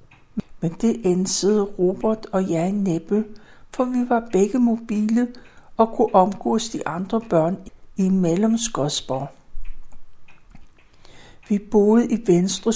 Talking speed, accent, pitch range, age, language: 120 wpm, native, 190-225 Hz, 60-79, Danish